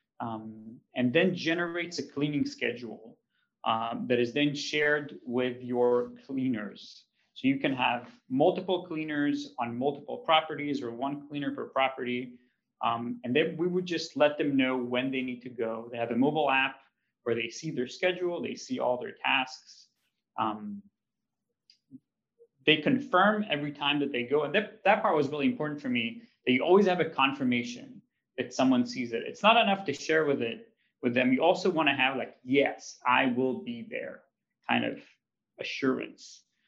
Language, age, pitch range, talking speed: English, 30-49, 125-175 Hz, 175 wpm